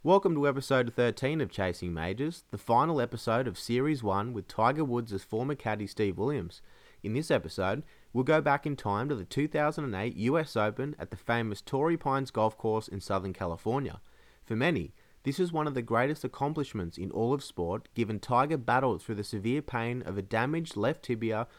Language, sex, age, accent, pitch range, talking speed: English, male, 30-49, Australian, 105-140 Hz, 190 wpm